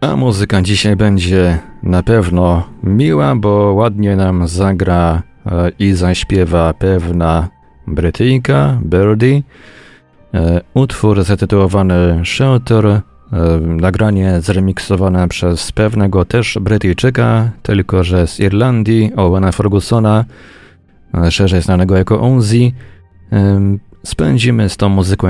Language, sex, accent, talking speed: Polish, male, native, 100 wpm